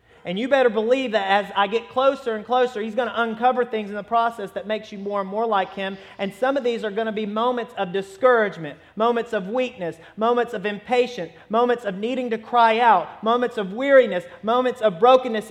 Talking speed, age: 215 wpm, 30-49